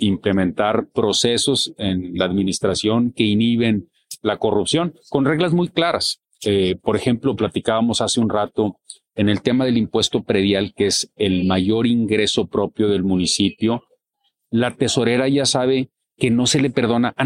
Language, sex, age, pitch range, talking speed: Spanish, male, 40-59, 110-150 Hz, 155 wpm